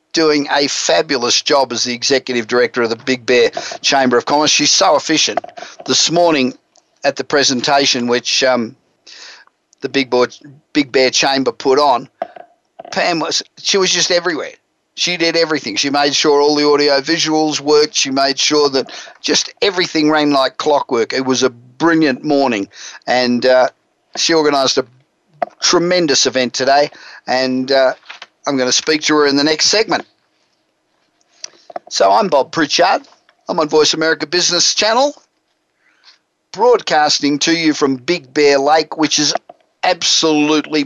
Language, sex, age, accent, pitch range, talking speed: English, male, 50-69, Australian, 130-165 Hz, 150 wpm